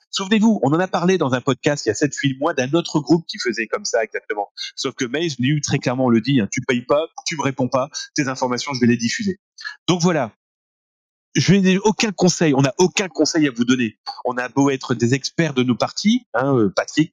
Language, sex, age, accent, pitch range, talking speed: French, male, 30-49, French, 130-185 Hz, 245 wpm